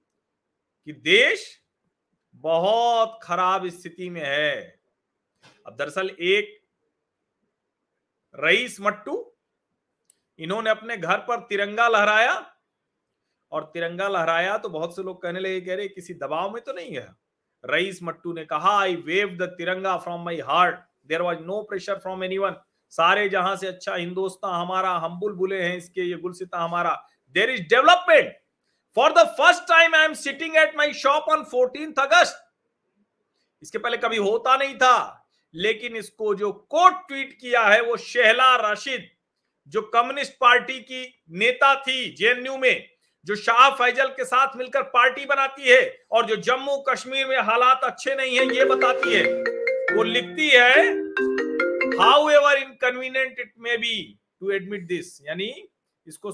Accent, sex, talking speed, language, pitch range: native, male, 145 wpm, Hindi, 185-275 Hz